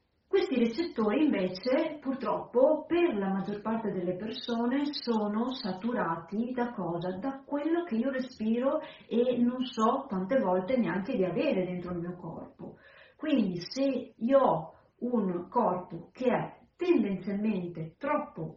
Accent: native